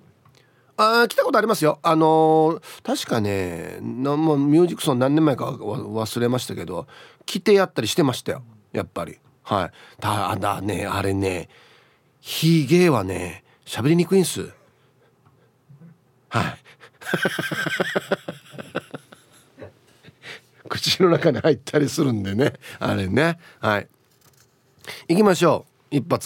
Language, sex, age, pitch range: Japanese, male, 40-59, 115-155 Hz